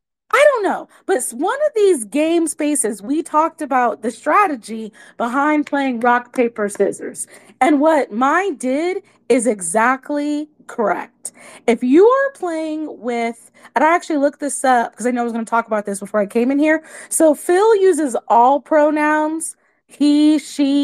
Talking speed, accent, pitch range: 170 wpm, American, 235-310 Hz